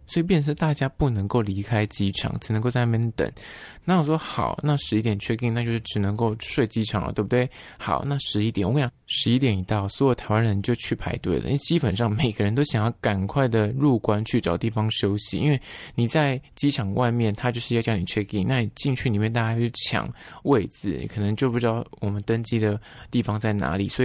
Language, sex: Chinese, male